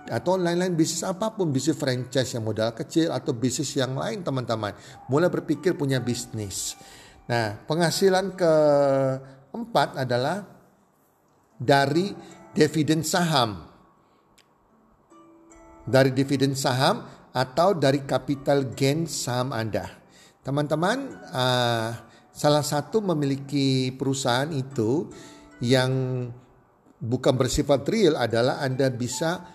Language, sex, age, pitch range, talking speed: Indonesian, male, 50-69, 120-150 Hz, 95 wpm